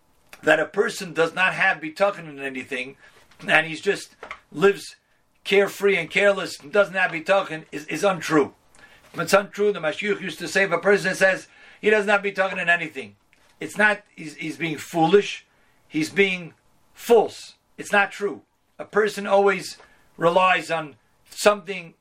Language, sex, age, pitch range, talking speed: English, male, 50-69, 150-195 Hz, 165 wpm